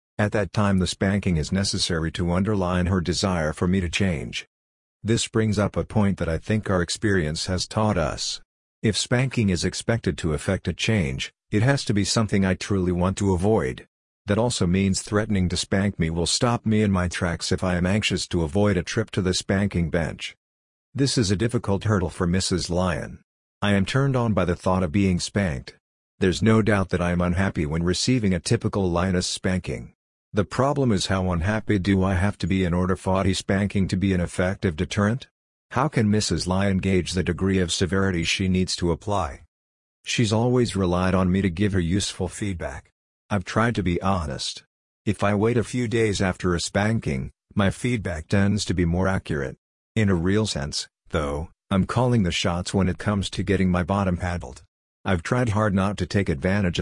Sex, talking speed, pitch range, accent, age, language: male, 200 wpm, 90-105 Hz, American, 50-69, English